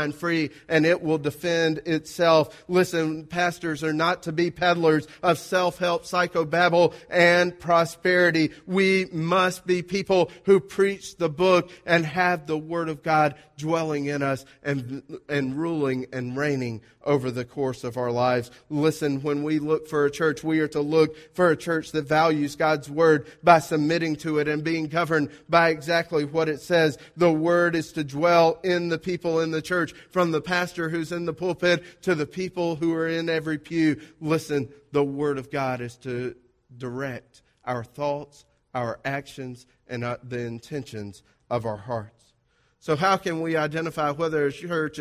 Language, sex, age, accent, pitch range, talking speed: English, male, 40-59, American, 145-170 Hz, 170 wpm